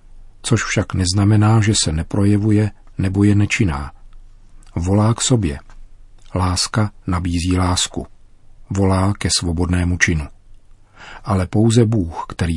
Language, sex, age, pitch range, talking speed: Czech, male, 40-59, 90-110 Hz, 110 wpm